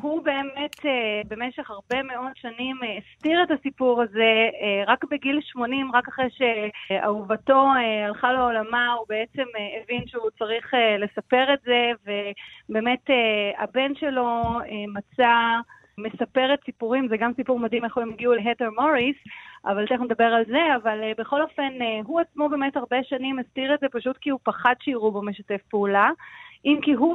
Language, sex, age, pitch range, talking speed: Hebrew, female, 30-49, 225-275 Hz, 150 wpm